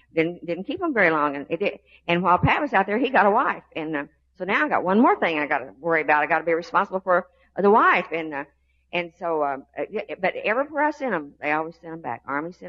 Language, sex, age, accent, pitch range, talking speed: English, female, 50-69, American, 145-195 Hz, 275 wpm